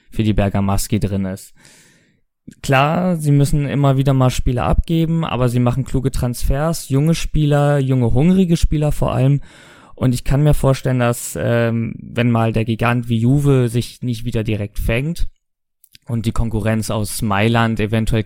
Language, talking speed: German, 160 wpm